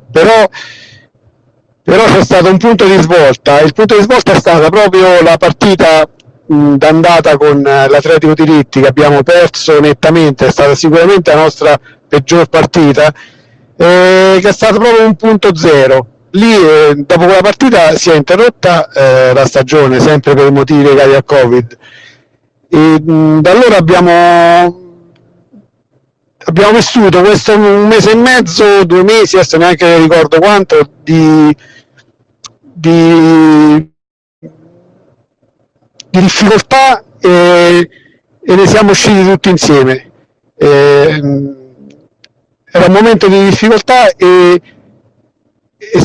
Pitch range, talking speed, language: 150-200 Hz, 120 wpm, Italian